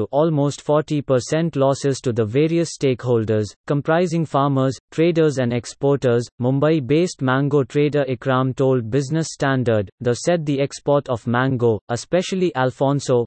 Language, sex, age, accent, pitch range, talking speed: English, male, 30-49, Indian, 125-150 Hz, 125 wpm